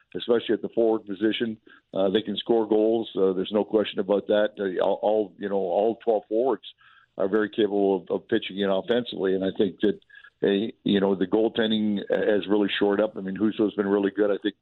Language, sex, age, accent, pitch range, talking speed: English, male, 60-79, American, 100-115 Hz, 225 wpm